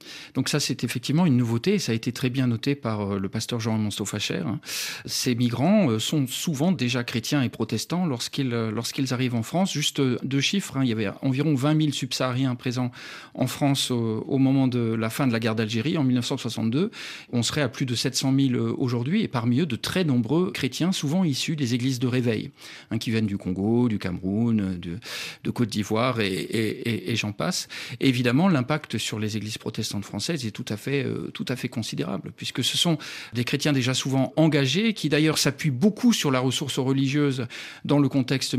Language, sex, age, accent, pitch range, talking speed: French, male, 40-59, French, 120-150 Hz, 205 wpm